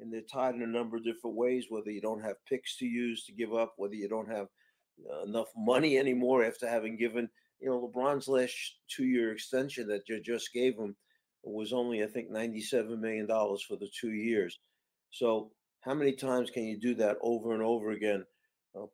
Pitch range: 110-130 Hz